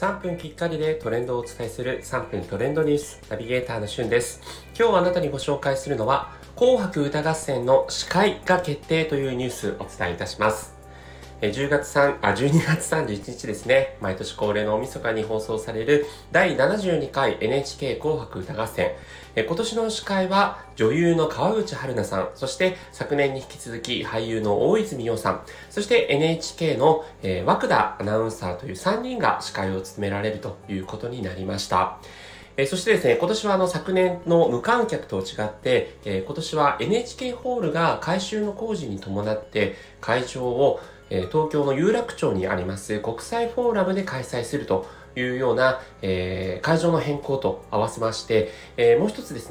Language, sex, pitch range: Japanese, male, 110-180 Hz